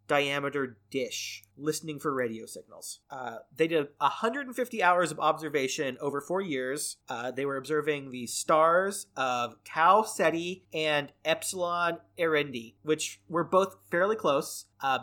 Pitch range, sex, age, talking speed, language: 140-180 Hz, male, 30-49, 135 wpm, English